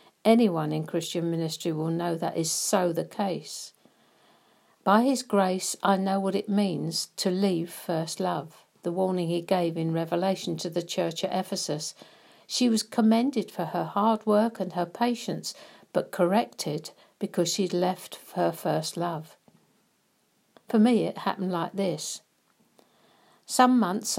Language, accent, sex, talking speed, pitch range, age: English, British, female, 150 wpm, 175-205 Hz, 60-79